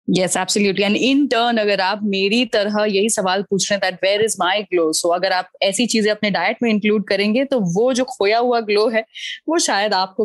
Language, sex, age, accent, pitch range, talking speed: Hindi, female, 20-39, native, 200-250 Hz, 100 wpm